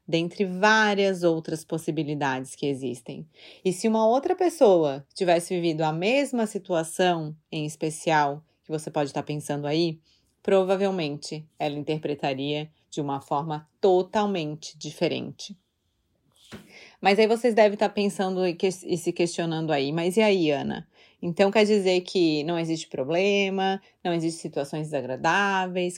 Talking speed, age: 135 wpm, 30-49